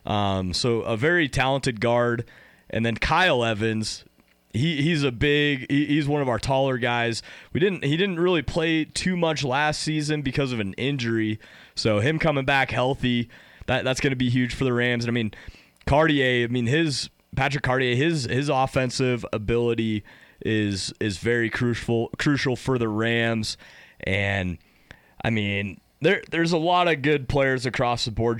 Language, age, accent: English, 30-49, American